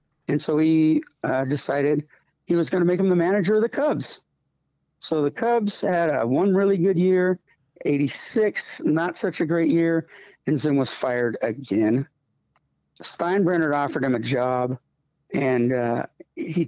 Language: English